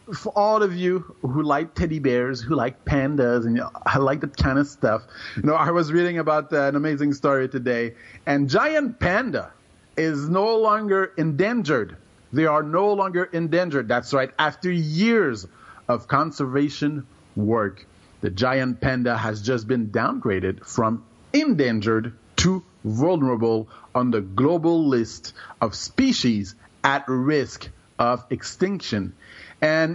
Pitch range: 120-160 Hz